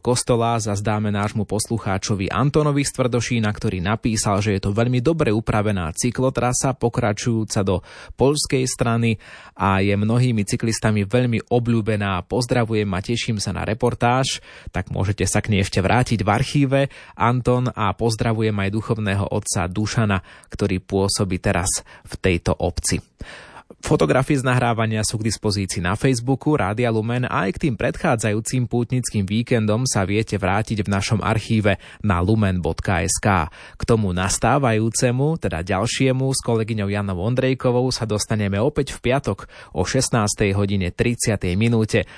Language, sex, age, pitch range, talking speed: Slovak, male, 20-39, 100-125 Hz, 135 wpm